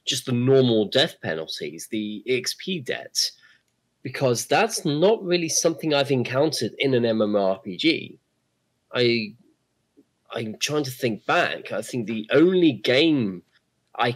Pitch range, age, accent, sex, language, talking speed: 100-145 Hz, 20-39, British, male, English, 125 wpm